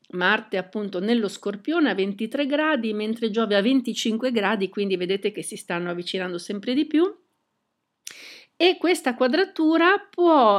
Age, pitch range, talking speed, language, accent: 50-69, 180-230 Hz, 140 wpm, Italian, native